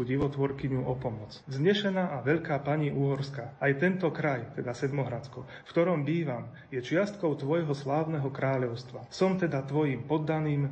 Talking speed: 140 wpm